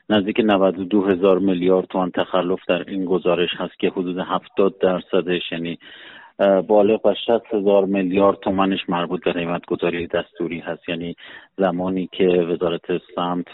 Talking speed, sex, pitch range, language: 130 wpm, male, 85-95 Hz, Persian